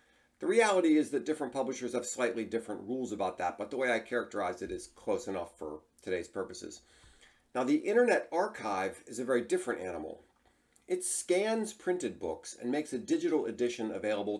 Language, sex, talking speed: English, male, 180 wpm